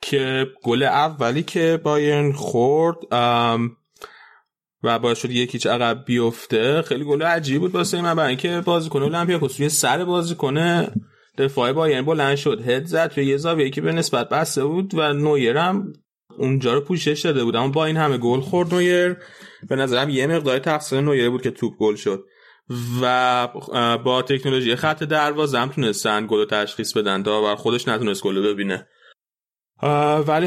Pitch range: 125-160 Hz